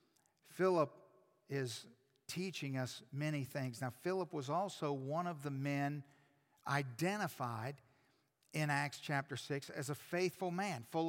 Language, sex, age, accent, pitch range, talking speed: English, male, 50-69, American, 135-170 Hz, 130 wpm